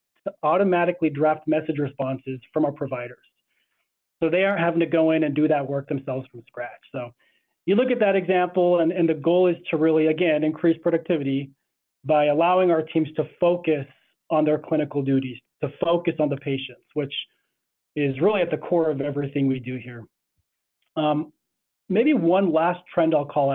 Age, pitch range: 30-49, 145-170 Hz